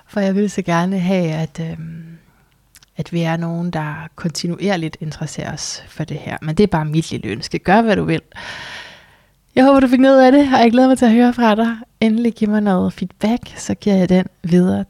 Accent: native